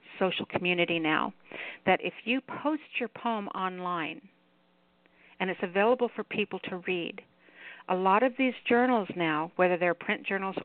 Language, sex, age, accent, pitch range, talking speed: English, female, 50-69, American, 175-215 Hz, 150 wpm